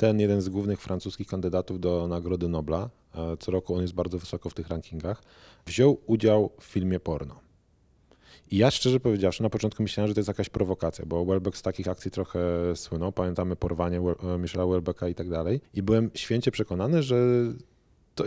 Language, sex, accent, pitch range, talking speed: Polish, male, native, 90-105 Hz, 180 wpm